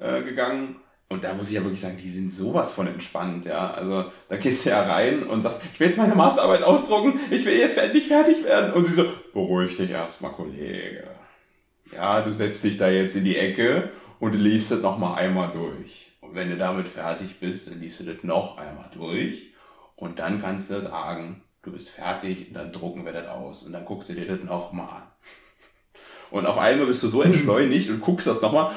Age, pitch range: 30-49, 95-115 Hz